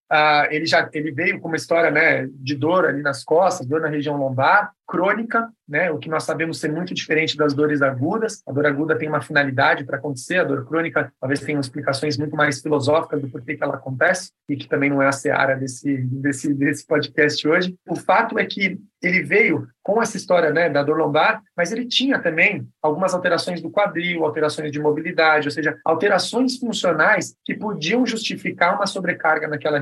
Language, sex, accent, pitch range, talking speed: Portuguese, male, Brazilian, 150-210 Hz, 195 wpm